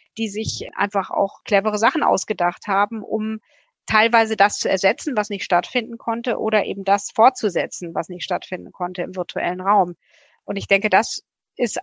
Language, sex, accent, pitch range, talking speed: German, female, German, 185-225 Hz, 165 wpm